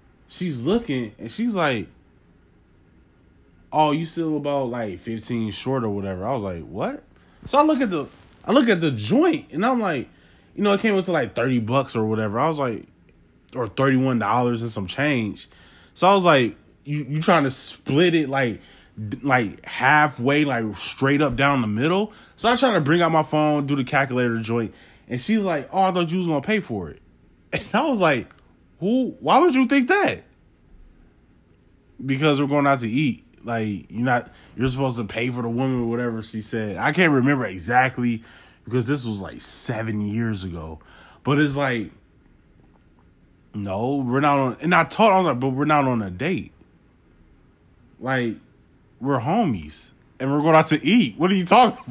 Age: 20-39